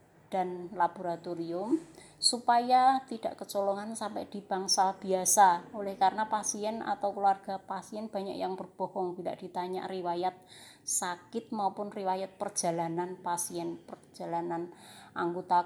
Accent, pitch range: native, 180-220 Hz